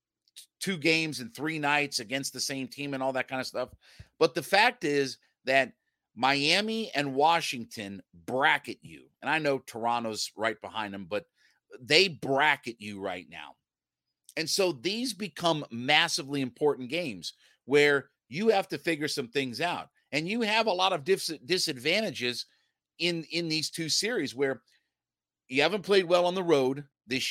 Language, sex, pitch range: English, male, 130-175 Hz